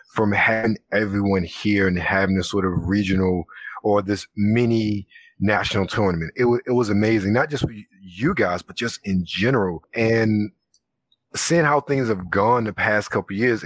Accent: American